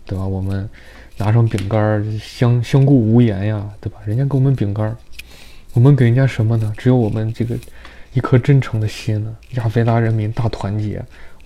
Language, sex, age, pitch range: Chinese, male, 20-39, 100-115 Hz